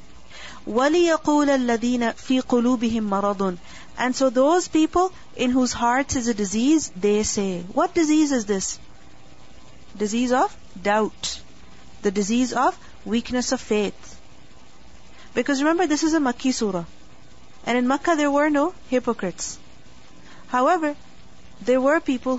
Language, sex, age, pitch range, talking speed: English, female, 40-59, 210-280 Hz, 115 wpm